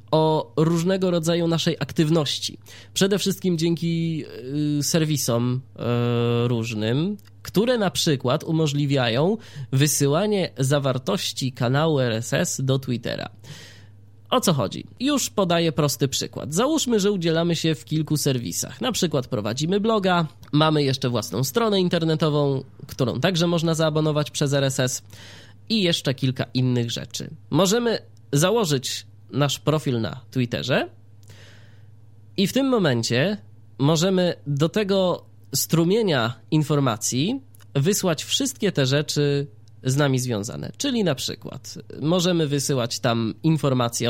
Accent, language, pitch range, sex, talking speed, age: native, Polish, 120-165 Hz, male, 115 wpm, 20-39